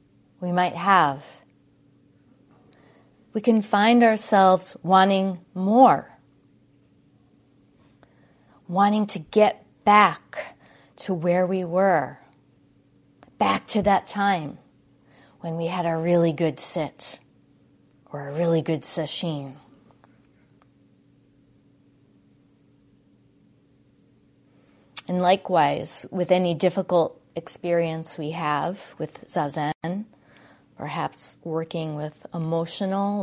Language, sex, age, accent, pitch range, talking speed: English, female, 30-49, American, 160-205 Hz, 85 wpm